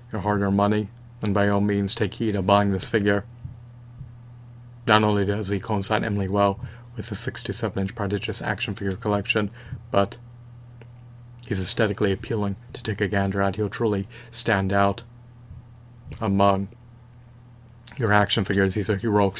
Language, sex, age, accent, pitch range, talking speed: English, male, 30-49, American, 100-120 Hz, 150 wpm